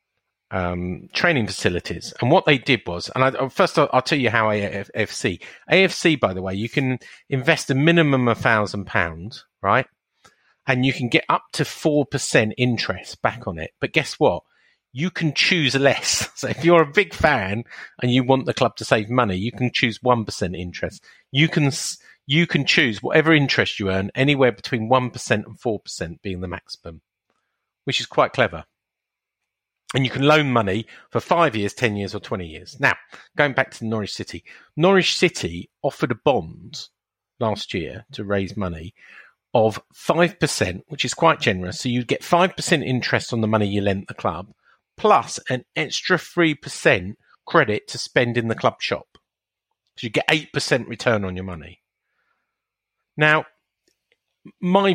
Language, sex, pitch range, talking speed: English, male, 105-150 Hz, 175 wpm